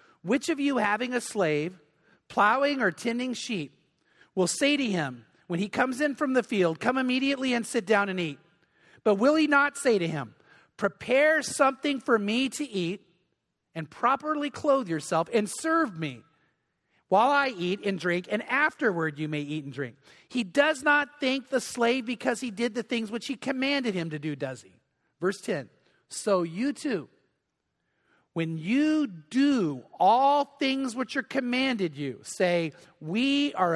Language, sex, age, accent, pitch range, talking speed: English, male, 40-59, American, 180-270 Hz, 170 wpm